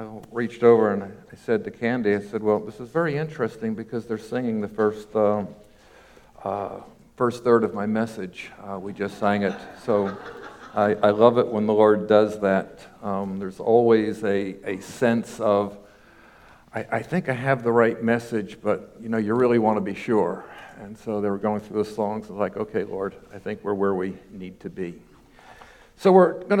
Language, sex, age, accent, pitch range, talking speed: English, male, 50-69, American, 105-140 Hz, 200 wpm